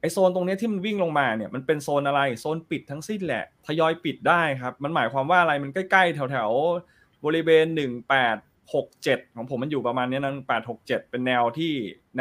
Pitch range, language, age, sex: 135-175 Hz, Thai, 20-39, male